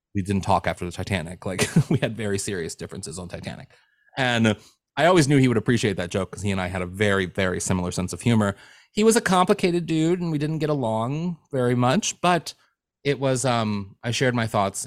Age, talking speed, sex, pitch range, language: 30-49, 220 wpm, male, 105-140 Hz, English